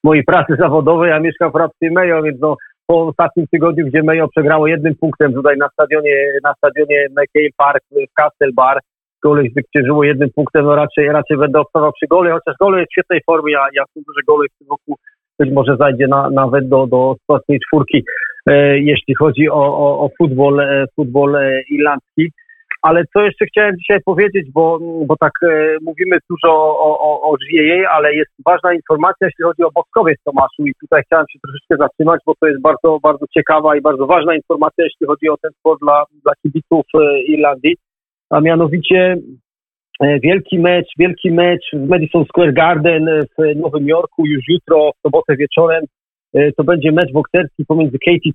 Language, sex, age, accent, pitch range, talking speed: Polish, male, 40-59, native, 145-170 Hz, 185 wpm